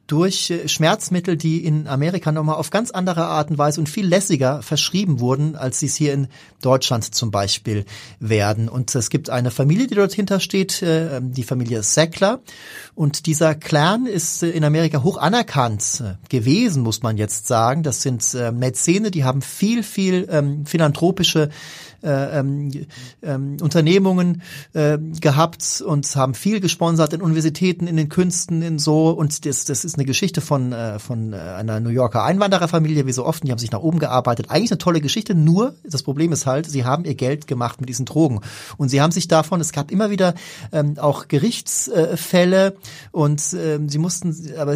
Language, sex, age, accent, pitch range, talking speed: German, male, 40-59, German, 130-170 Hz, 175 wpm